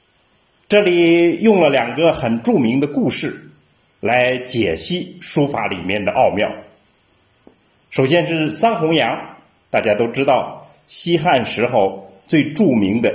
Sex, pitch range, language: male, 125-200 Hz, Chinese